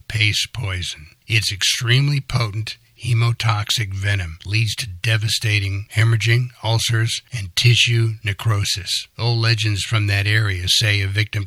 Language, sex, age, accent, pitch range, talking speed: English, male, 60-79, American, 95-115 Hz, 120 wpm